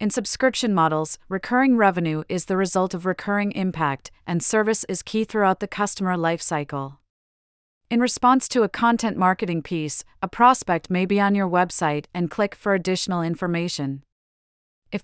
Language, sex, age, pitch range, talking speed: English, female, 40-59, 165-200 Hz, 160 wpm